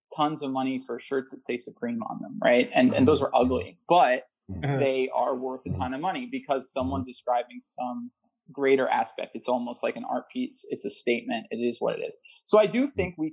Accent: American